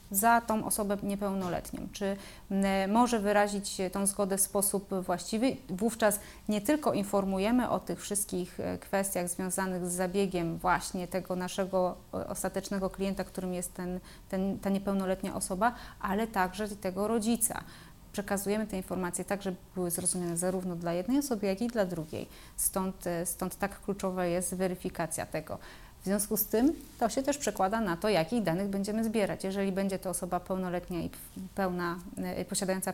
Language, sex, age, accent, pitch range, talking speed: Polish, female, 30-49, native, 185-210 Hz, 150 wpm